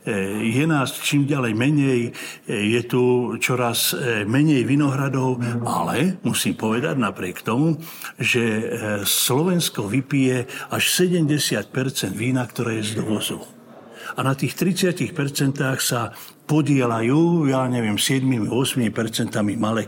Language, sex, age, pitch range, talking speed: Slovak, male, 60-79, 120-145 Hz, 105 wpm